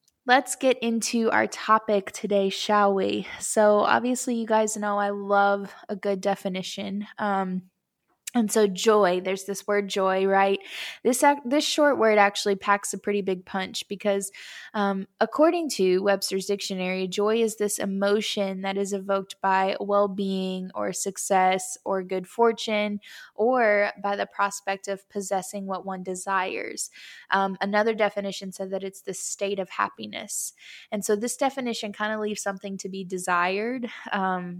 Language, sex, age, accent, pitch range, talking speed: English, female, 10-29, American, 195-215 Hz, 155 wpm